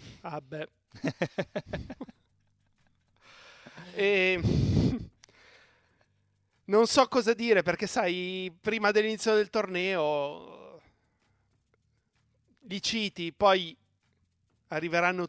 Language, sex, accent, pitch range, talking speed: Italian, male, native, 155-195 Hz, 65 wpm